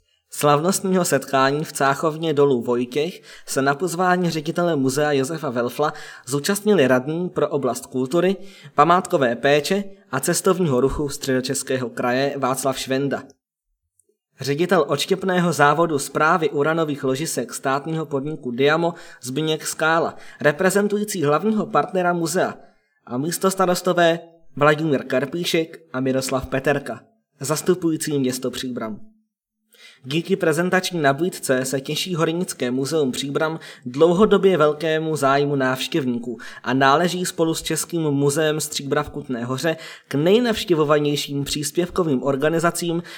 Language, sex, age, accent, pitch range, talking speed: Czech, male, 20-39, native, 135-175 Hz, 110 wpm